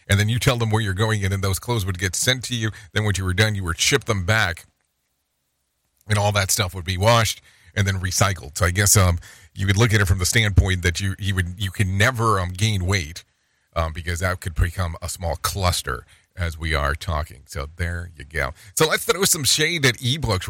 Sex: male